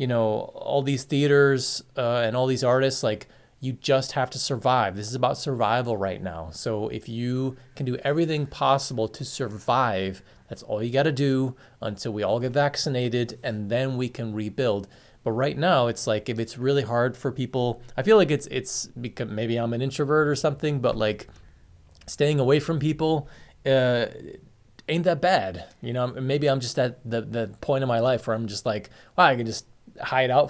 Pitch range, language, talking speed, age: 115-140 Hz, English, 200 wpm, 20-39